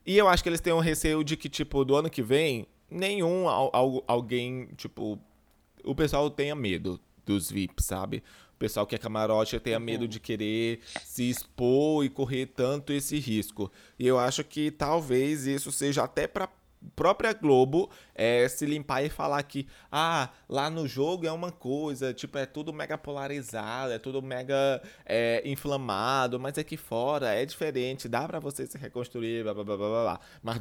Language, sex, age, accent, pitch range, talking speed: Portuguese, male, 20-39, Brazilian, 110-150 Hz, 175 wpm